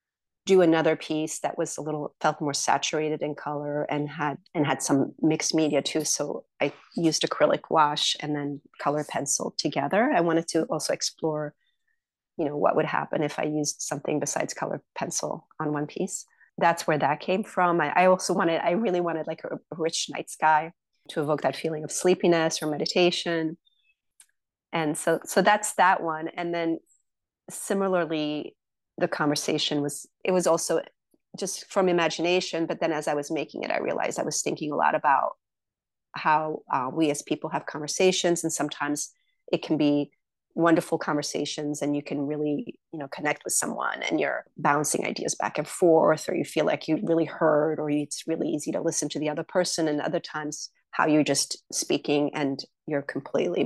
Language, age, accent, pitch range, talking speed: English, 30-49, American, 150-170 Hz, 185 wpm